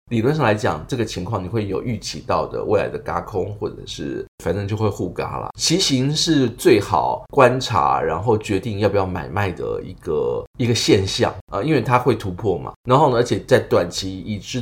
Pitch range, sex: 100-130 Hz, male